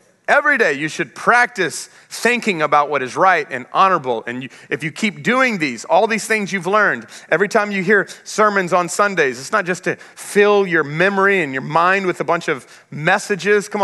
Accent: American